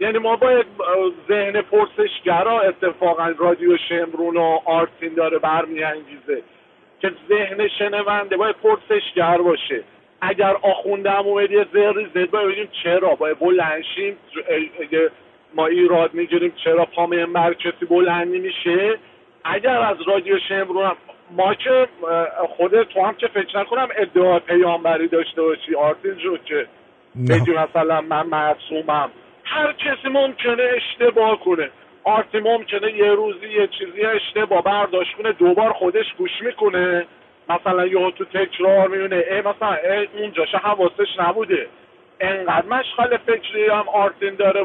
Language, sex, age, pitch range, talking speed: English, male, 50-69, 175-235 Hz, 130 wpm